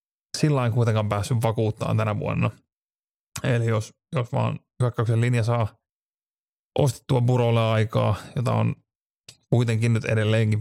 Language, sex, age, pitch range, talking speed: Finnish, male, 30-49, 110-130 Hz, 120 wpm